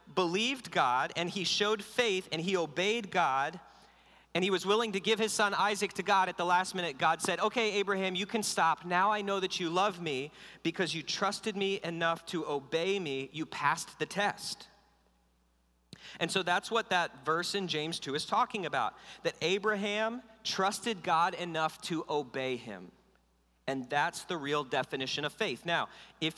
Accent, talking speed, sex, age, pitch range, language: American, 180 wpm, male, 40-59, 150-195 Hz, English